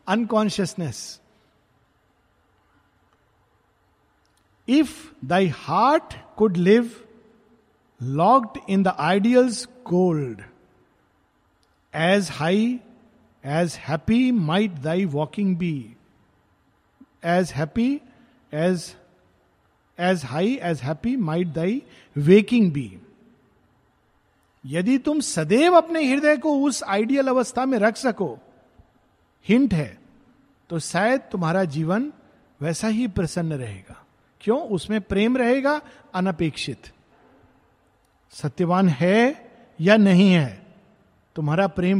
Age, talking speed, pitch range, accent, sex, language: 50-69, 90 wpm, 145-225 Hz, native, male, Hindi